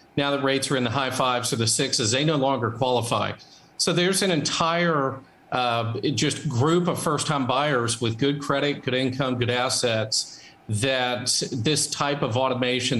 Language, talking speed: English, 170 wpm